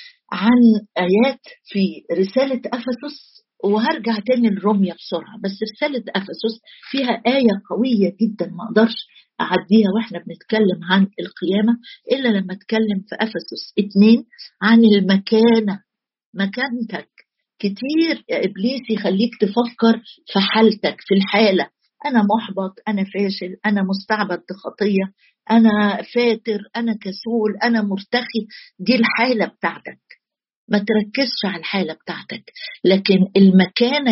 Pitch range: 195-240 Hz